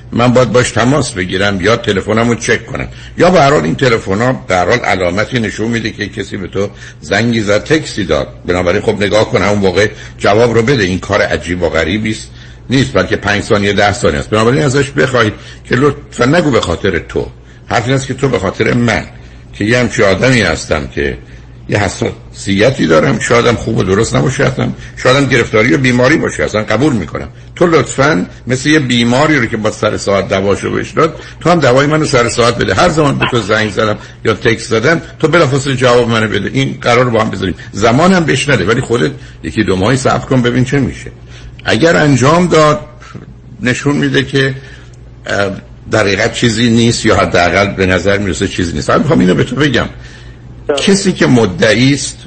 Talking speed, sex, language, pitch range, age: 190 wpm, male, Persian, 100-130 Hz, 60-79